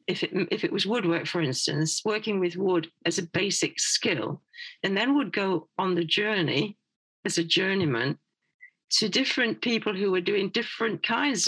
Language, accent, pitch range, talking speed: English, British, 170-210 Hz, 170 wpm